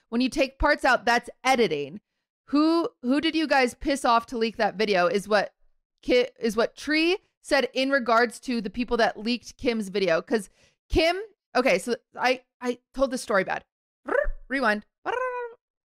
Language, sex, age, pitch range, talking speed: English, female, 30-49, 220-275 Hz, 170 wpm